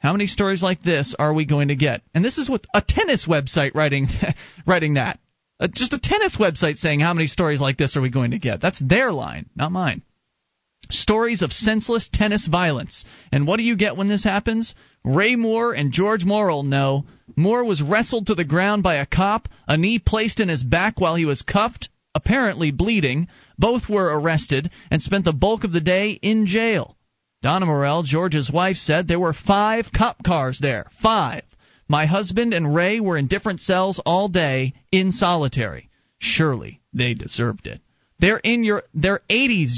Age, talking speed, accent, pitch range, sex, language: 30-49, 190 wpm, American, 150-210 Hz, male, English